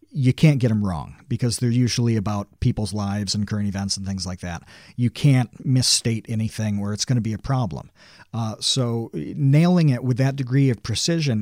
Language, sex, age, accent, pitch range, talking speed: English, male, 40-59, American, 105-145 Hz, 200 wpm